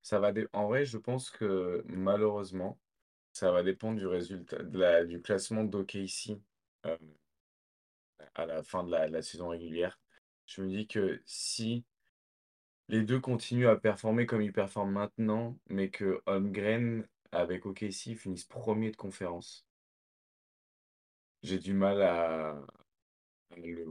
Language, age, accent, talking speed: French, 20-39, French, 145 wpm